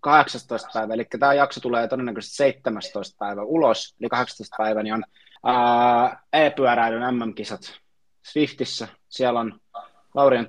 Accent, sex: native, male